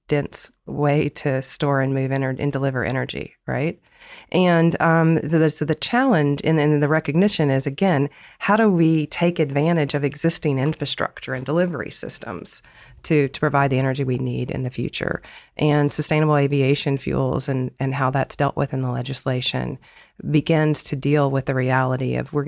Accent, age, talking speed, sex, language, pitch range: American, 40-59, 175 wpm, female, English, 135-160 Hz